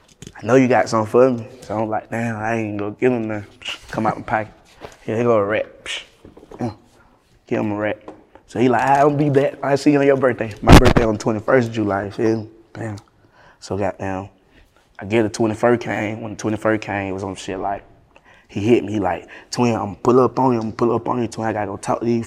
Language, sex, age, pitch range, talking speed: English, male, 20-39, 100-120 Hz, 255 wpm